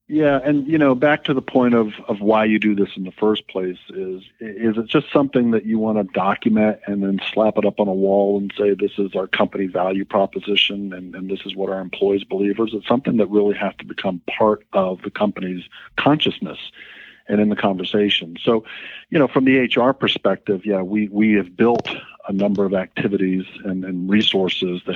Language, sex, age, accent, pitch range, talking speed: English, male, 50-69, American, 95-110 Hz, 215 wpm